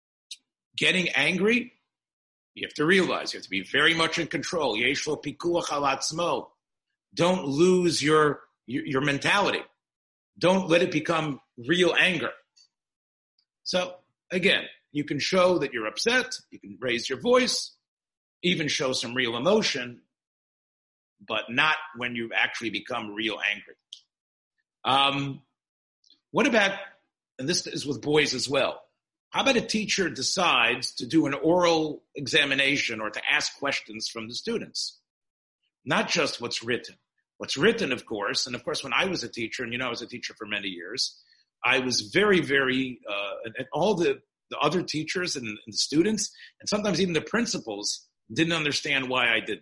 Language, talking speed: English, 155 wpm